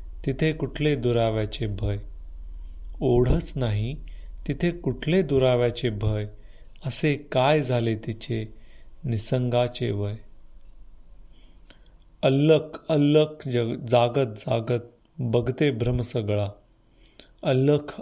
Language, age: Marathi, 30-49